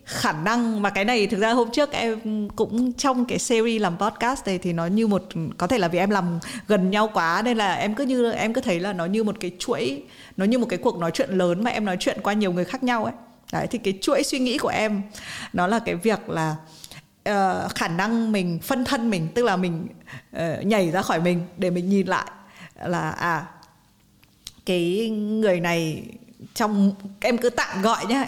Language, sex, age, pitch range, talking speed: Vietnamese, female, 20-39, 185-230 Hz, 225 wpm